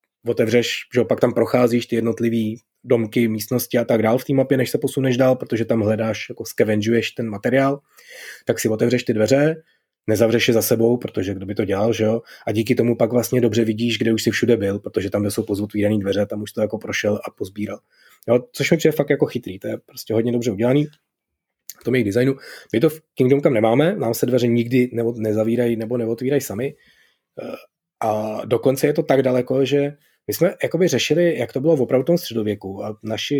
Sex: male